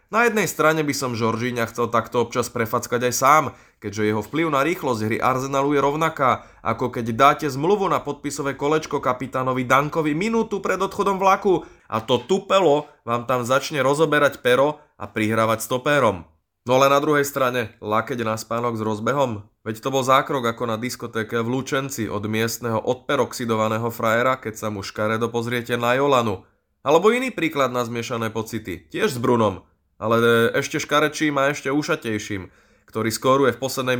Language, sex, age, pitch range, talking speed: Slovak, male, 30-49, 110-140 Hz, 170 wpm